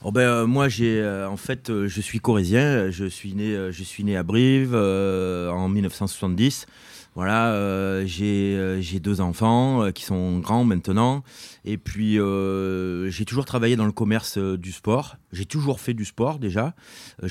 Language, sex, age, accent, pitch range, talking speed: French, male, 30-49, French, 95-115 Hz, 185 wpm